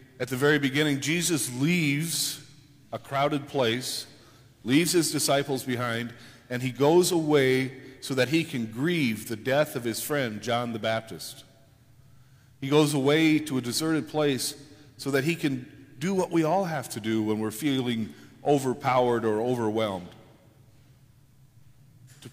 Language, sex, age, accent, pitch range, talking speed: English, male, 50-69, American, 125-145 Hz, 150 wpm